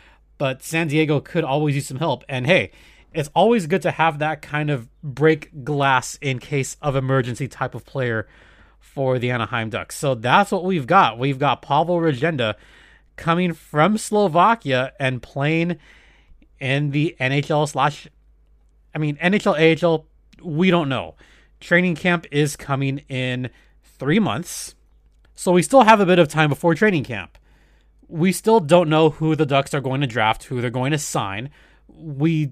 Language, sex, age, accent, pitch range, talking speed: English, male, 30-49, American, 125-170 Hz, 170 wpm